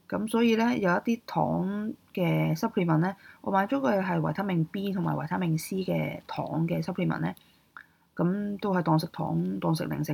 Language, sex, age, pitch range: Chinese, female, 20-39, 160-215 Hz